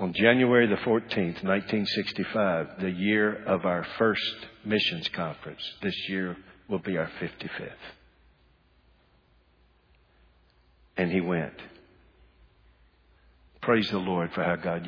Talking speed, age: 110 wpm, 60-79